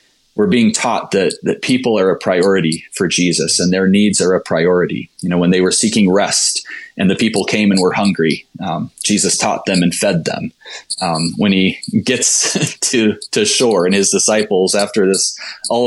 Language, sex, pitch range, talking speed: English, male, 90-105 Hz, 195 wpm